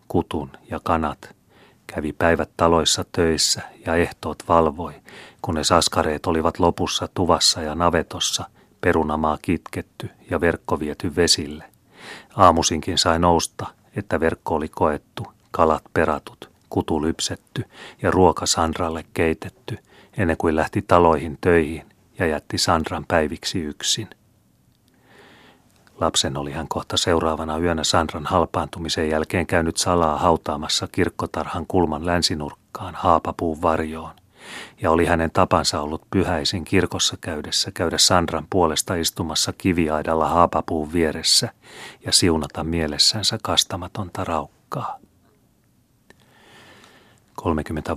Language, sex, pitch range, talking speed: Finnish, male, 80-85 Hz, 110 wpm